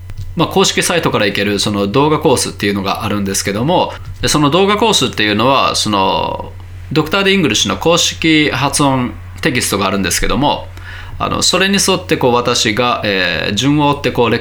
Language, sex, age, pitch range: Japanese, male, 20-39, 95-140 Hz